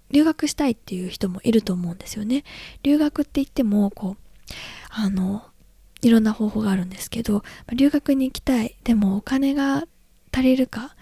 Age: 20-39